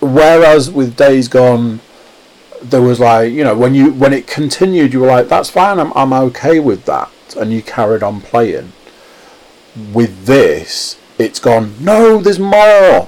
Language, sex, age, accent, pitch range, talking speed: English, male, 40-59, British, 100-145 Hz, 165 wpm